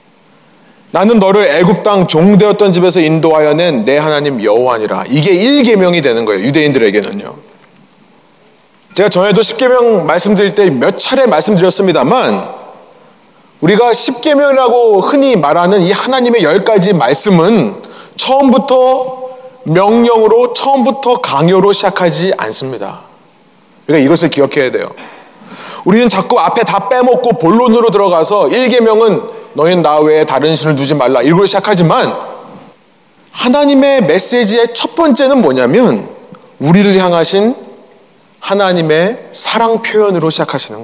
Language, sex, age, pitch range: Korean, male, 30-49, 170-235 Hz